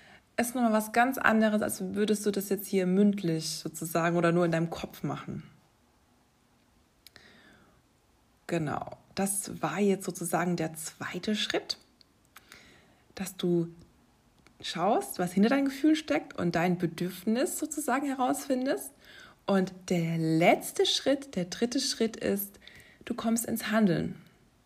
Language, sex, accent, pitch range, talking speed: German, female, German, 180-240 Hz, 130 wpm